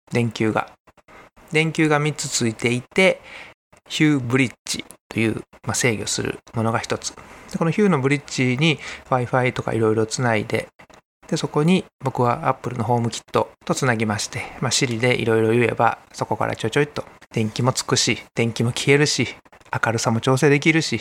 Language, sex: Japanese, male